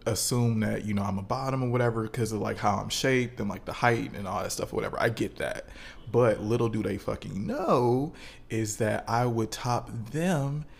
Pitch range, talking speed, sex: 105-130 Hz, 220 wpm, male